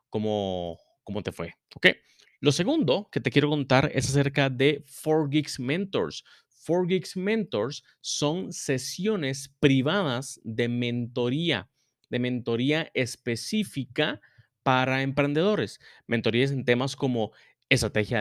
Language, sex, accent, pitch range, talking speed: Spanish, male, Mexican, 110-145 Hz, 110 wpm